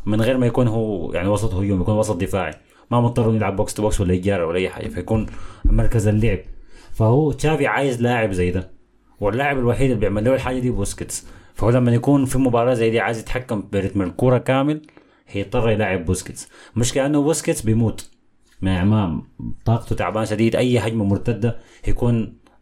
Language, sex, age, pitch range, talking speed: Arabic, male, 30-49, 100-130 Hz, 175 wpm